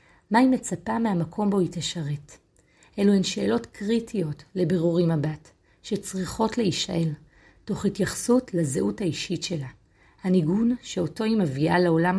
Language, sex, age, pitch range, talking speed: Hebrew, female, 30-49, 165-210 Hz, 125 wpm